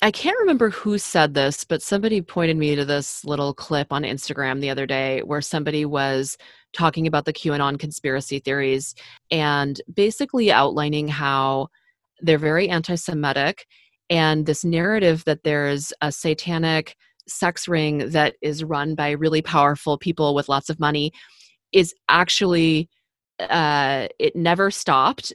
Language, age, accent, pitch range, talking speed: English, 30-49, American, 150-195 Hz, 145 wpm